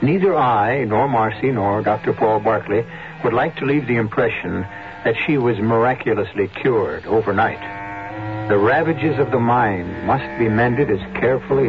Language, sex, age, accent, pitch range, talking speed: English, male, 60-79, American, 110-155 Hz, 155 wpm